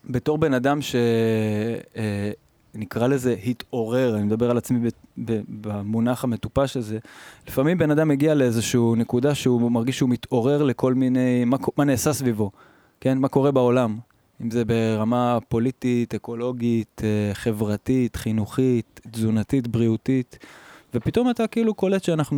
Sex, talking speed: male, 135 wpm